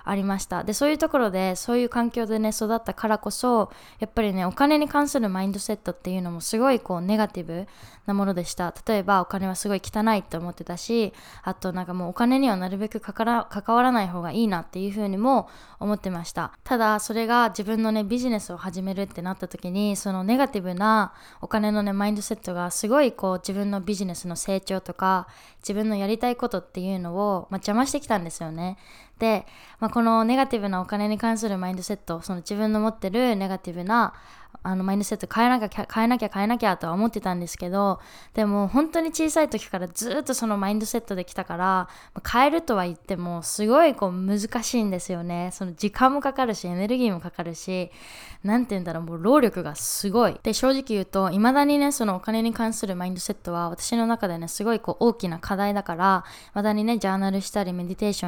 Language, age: Japanese, 20-39